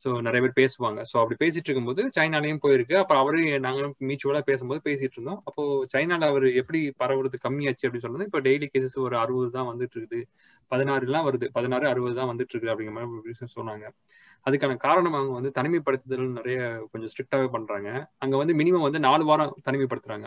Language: Tamil